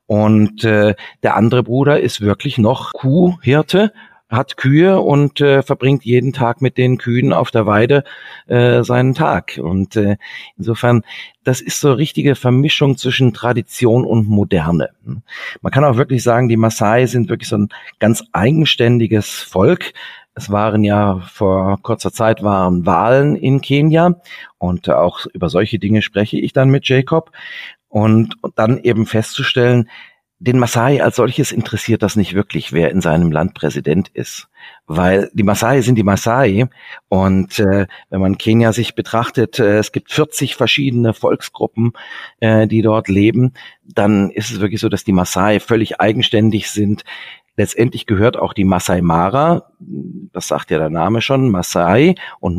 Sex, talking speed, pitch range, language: male, 155 wpm, 100-125 Hz, German